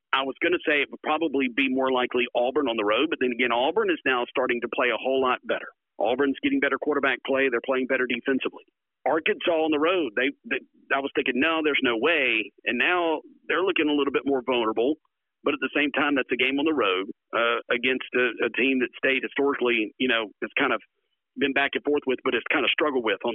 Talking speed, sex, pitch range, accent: 245 wpm, male, 125-165 Hz, American